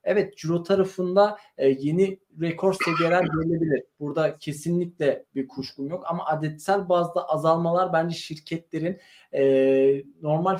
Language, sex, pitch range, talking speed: Turkish, male, 135-170 Hz, 110 wpm